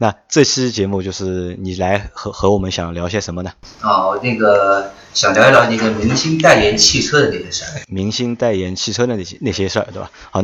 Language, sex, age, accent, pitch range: Chinese, male, 20-39, native, 95-120 Hz